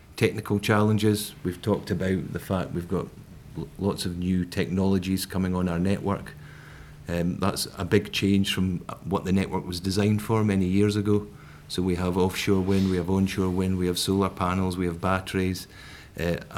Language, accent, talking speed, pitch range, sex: English, British, 175 wpm, 90-105 Hz, male